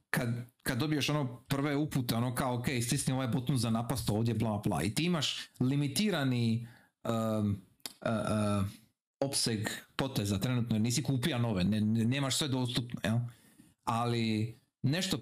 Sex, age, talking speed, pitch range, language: male, 40-59, 150 wpm, 120-175 Hz, Croatian